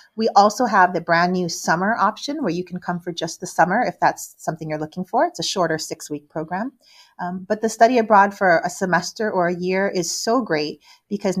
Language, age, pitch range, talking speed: German, 30-49, 170-210 Hz, 225 wpm